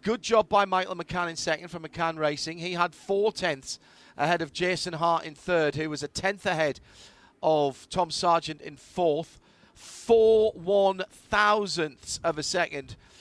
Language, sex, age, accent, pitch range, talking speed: English, male, 40-59, British, 150-195 Hz, 165 wpm